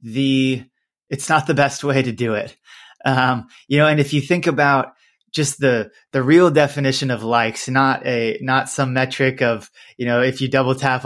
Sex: male